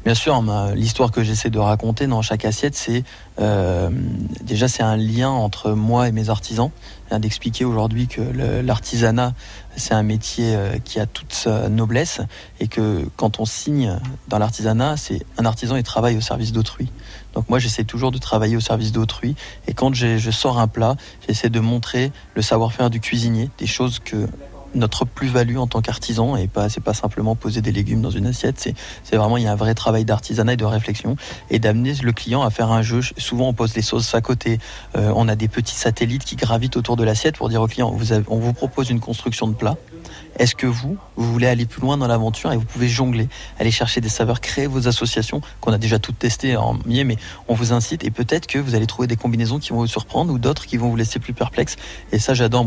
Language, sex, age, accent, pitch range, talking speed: French, male, 20-39, French, 110-125 Hz, 230 wpm